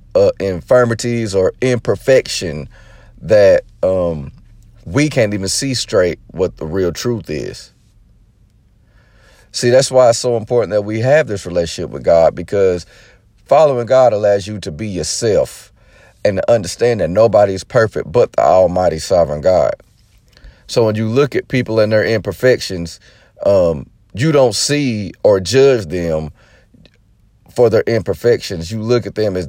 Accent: American